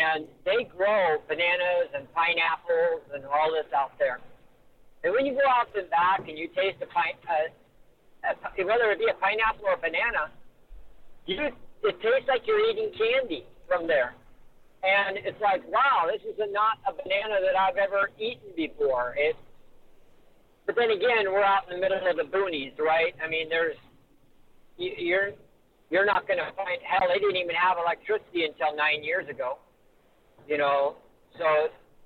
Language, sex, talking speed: English, male, 170 wpm